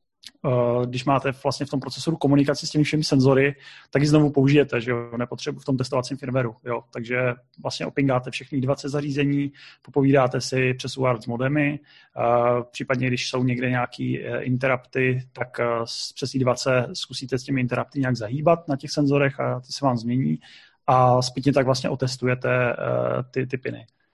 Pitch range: 130-145 Hz